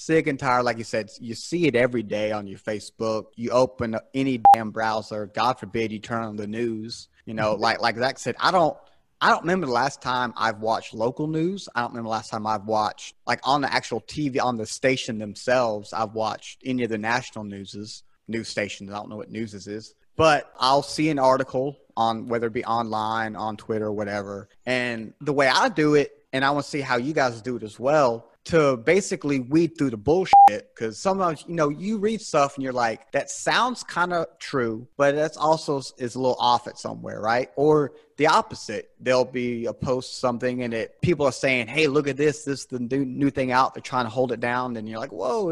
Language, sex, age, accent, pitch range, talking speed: English, male, 30-49, American, 110-140 Hz, 230 wpm